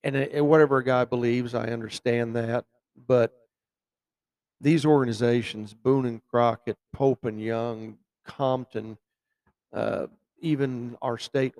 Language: English